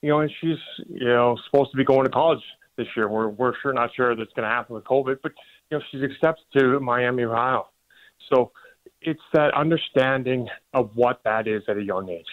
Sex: male